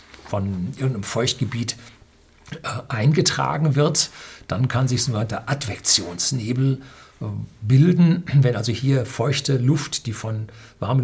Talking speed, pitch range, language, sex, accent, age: 120 wpm, 110-145 Hz, German, male, German, 60-79